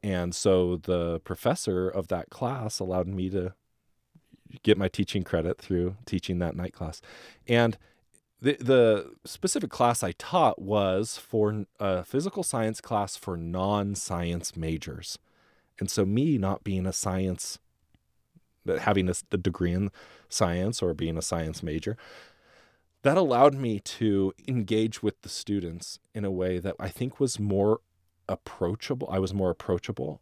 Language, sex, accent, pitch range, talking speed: English, male, American, 90-115 Hz, 145 wpm